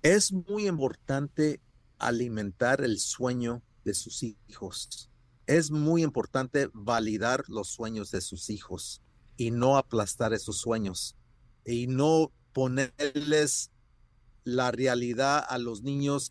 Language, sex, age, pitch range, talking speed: Spanish, male, 50-69, 115-135 Hz, 115 wpm